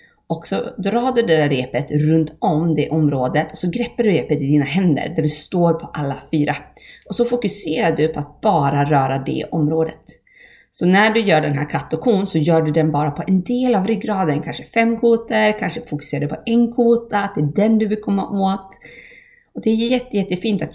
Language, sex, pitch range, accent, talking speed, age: Swedish, female, 150-210 Hz, native, 215 wpm, 30-49